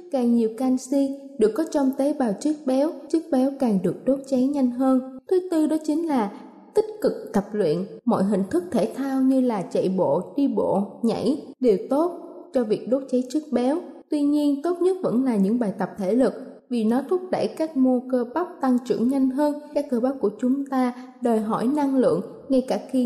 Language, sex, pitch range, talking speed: Vietnamese, female, 230-290 Hz, 215 wpm